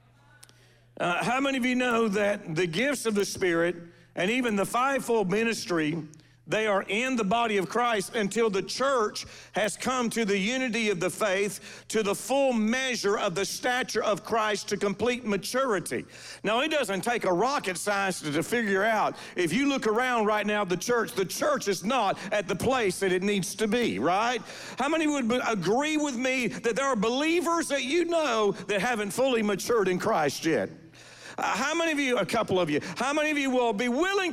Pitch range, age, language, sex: 195-245 Hz, 50-69, English, male